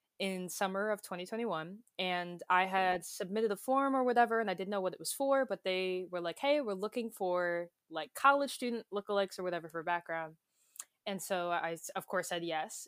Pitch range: 170-205 Hz